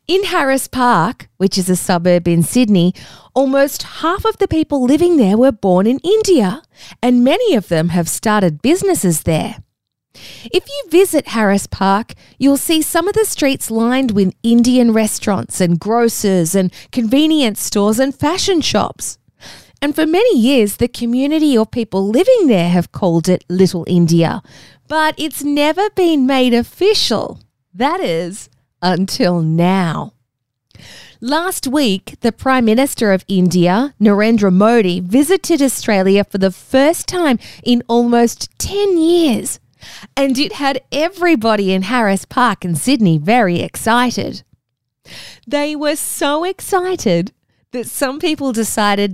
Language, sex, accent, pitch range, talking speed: English, female, Australian, 190-290 Hz, 140 wpm